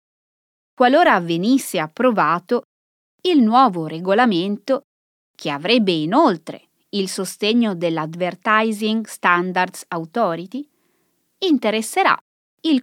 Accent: native